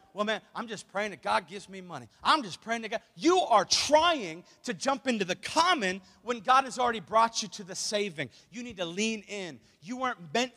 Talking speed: 225 wpm